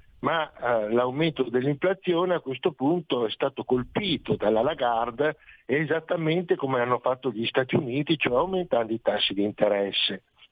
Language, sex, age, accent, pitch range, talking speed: Italian, male, 60-79, native, 125-175 Hz, 145 wpm